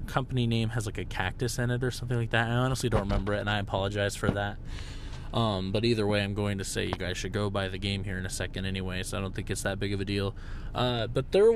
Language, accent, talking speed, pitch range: English, American, 285 wpm, 100-125 Hz